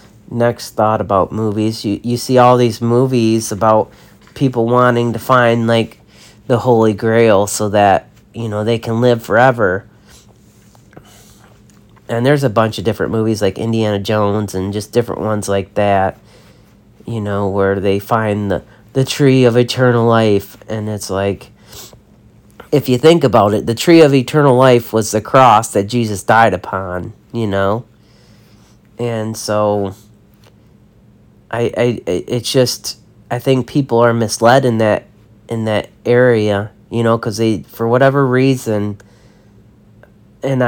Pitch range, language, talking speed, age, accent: 105-120 Hz, English, 150 wpm, 40-59, American